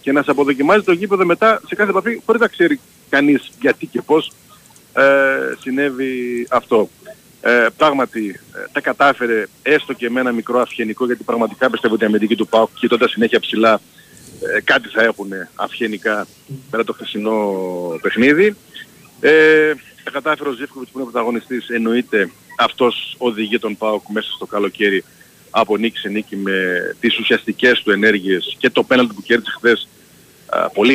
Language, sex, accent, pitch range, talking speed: Greek, male, native, 110-145 Hz, 160 wpm